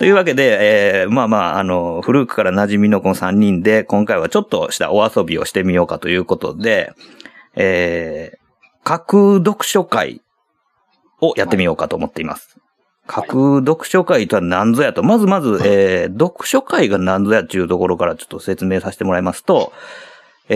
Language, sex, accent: Japanese, male, native